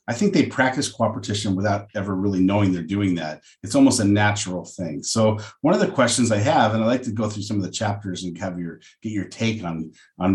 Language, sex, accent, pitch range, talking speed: English, male, American, 95-115 Hz, 245 wpm